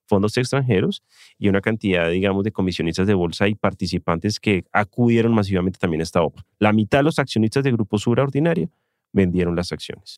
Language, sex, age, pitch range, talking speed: English, male, 30-49, 95-145 Hz, 185 wpm